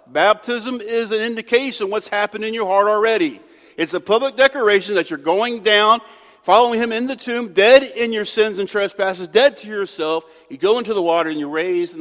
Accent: American